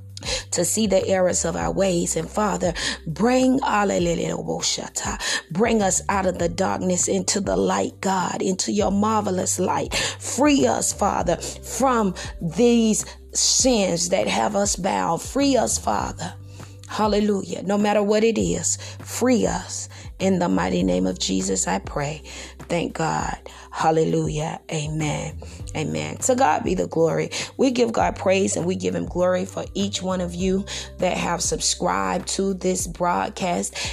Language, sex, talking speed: English, female, 145 wpm